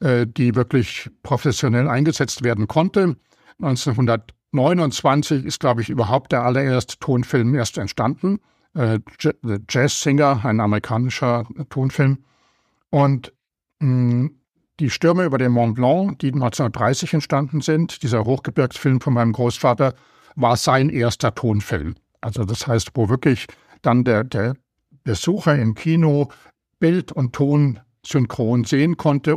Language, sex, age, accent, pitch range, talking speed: German, male, 60-79, German, 115-145 Hz, 125 wpm